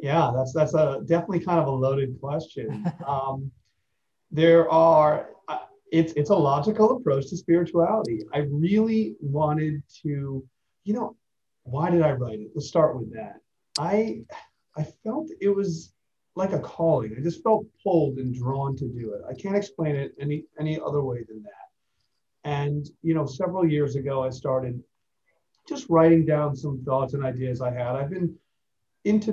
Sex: male